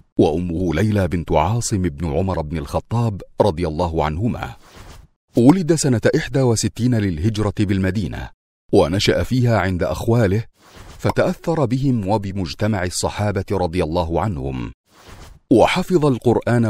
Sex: male